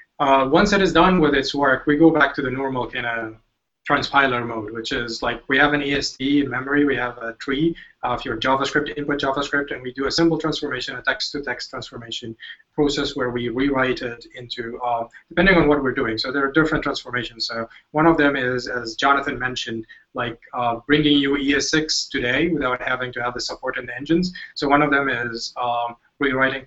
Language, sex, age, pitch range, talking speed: English, male, 20-39, 125-145 Hz, 210 wpm